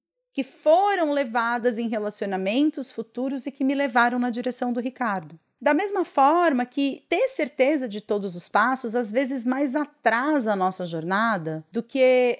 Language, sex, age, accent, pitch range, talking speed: Portuguese, female, 30-49, Brazilian, 170-235 Hz, 160 wpm